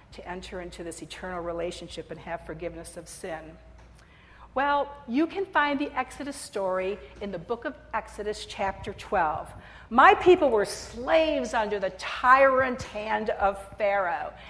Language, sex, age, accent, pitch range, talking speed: English, female, 50-69, American, 205-315 Hz, 145 wpm